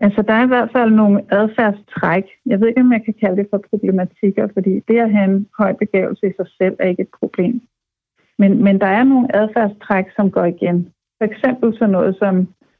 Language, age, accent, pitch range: Danish, 60-79, native, 190-225 Hz